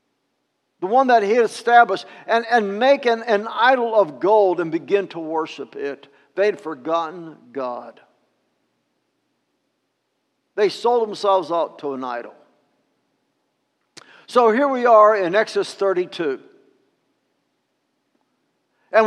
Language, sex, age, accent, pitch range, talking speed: English, male, 60-79, American, 215-300 Hz, 115 wpm